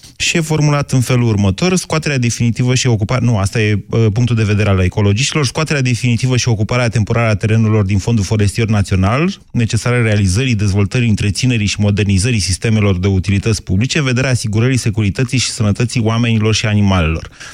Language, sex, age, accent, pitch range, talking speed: Romanian, male, 30-49, native, 100-125 Hz, 155 wpm